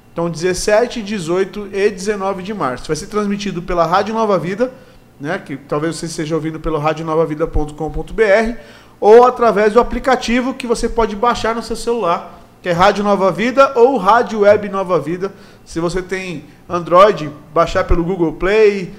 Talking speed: 160 wpm